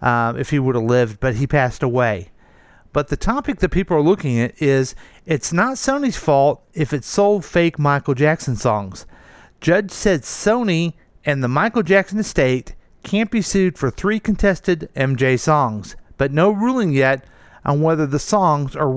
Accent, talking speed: American, 175 wpm